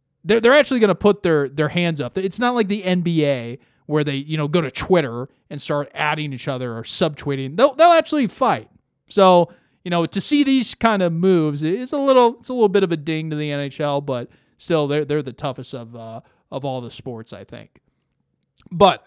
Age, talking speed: 30-49, 220 wpm